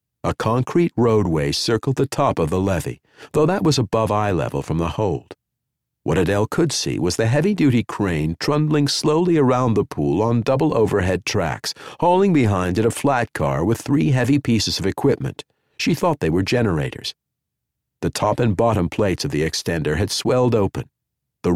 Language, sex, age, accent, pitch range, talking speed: English, male, 50-69, American, 95-140 Hz, 180 wpm